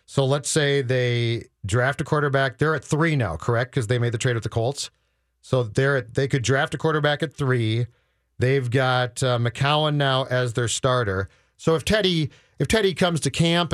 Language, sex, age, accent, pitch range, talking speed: English, male, 40-59, American, 125-155 Hz, 200 wpm